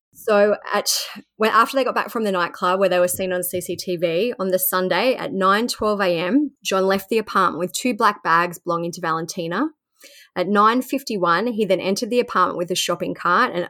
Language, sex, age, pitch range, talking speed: English, female, 20-39, 180-210 Hz, 195 wpm